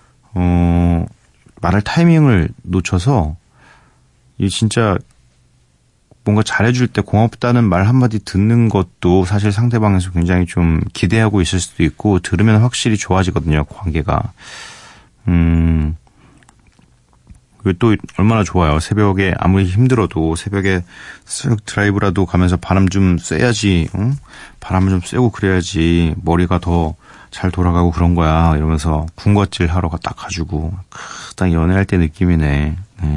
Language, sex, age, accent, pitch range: Korean, male, 30-49, native, 85-110 Hz